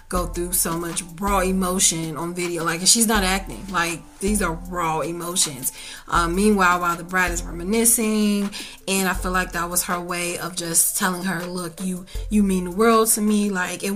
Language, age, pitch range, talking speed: English, 30-49, 180-210 Hz, 200 wpm